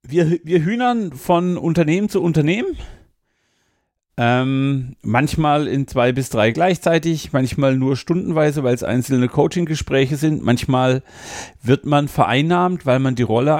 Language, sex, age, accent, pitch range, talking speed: German, male, 40-59, German, 120-165 Hz, 130 wpm